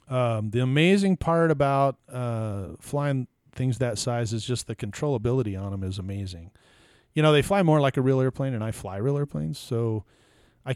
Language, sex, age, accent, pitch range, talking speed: English, male, 40-59, American, 105-130 Hz, 190 wpm